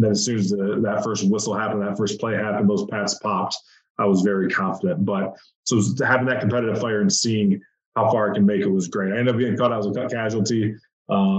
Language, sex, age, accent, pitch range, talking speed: English, male, 20-39, American, 105-120 Hz, 255 wpm